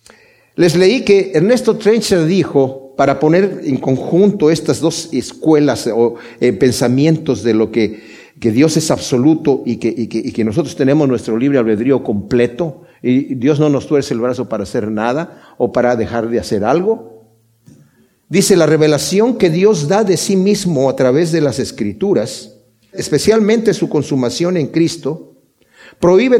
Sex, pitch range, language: male, 120-190 Hz, Spanish